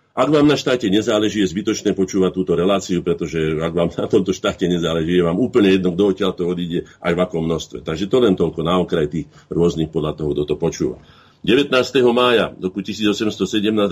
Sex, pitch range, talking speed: male, 90-105 Hz, 195 wpm